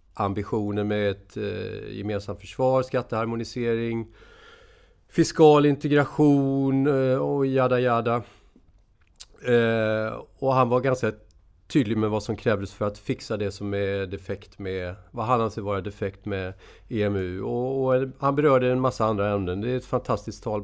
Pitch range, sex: 100-125 Hz, male